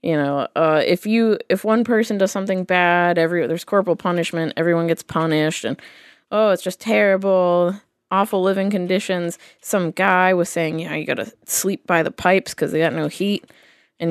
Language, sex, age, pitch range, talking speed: English, female, 20-39, 165-205 Hz, 185 wpm